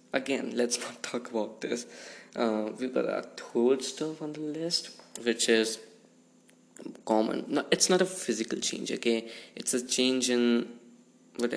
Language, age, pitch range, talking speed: English, 20-39, 110-130 Hz, 155 wpm